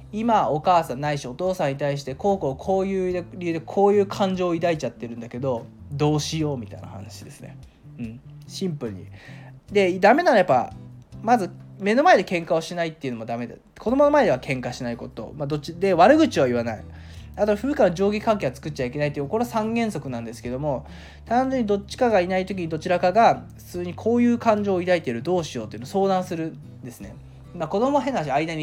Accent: native